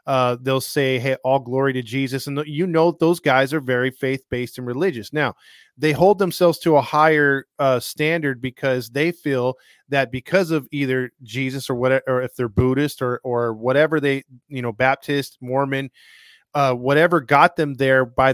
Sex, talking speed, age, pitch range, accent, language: male, 185 wpm, 20-39, 130-160 Hz, American, English